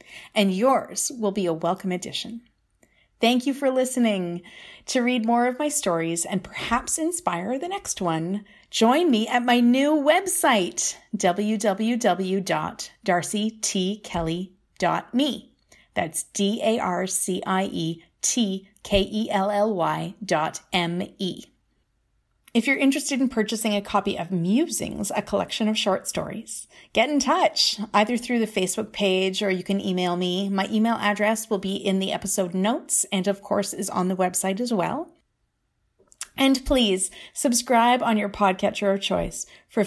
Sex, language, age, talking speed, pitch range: female, English, 30-49, 130 wpm, 190-235 Hz